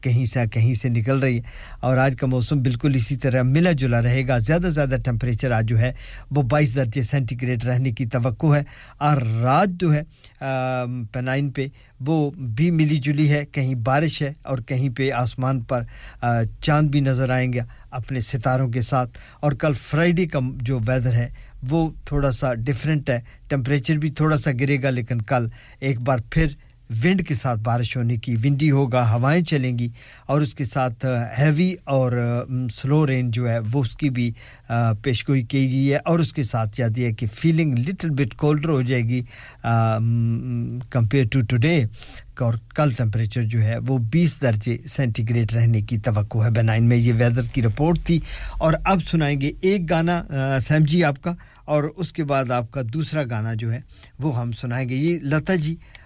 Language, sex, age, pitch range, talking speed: English, male, 50-69, 120-145 Hz, 145 wpm